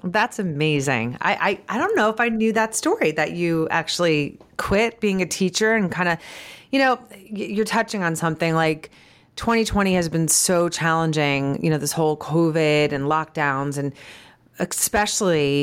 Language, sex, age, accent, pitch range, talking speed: English, female, 30-49, American, 150-190 Hz, 160 wpm